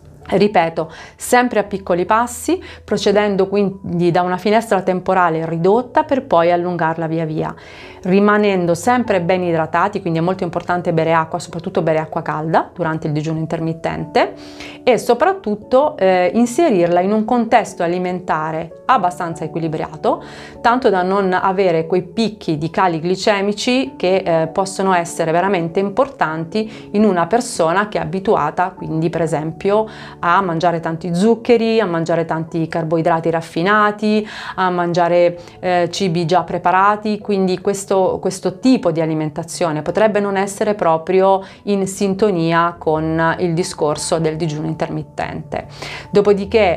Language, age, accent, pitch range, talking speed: Italian, 30-49, native, 165-205 Hz, 130 wpm